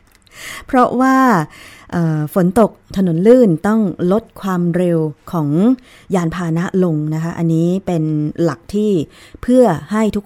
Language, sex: Thai, female